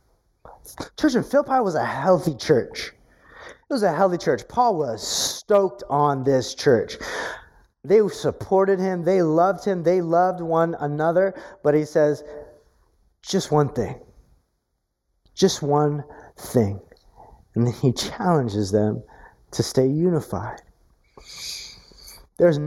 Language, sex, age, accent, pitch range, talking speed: English, male, 30-49, American, 115-170 Hz, 120 wpm